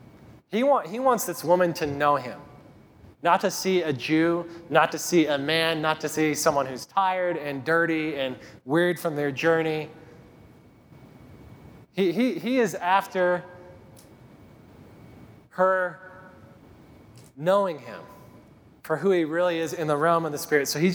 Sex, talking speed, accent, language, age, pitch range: male, 150 wpm, American, English, 20-39, 140-180 Hz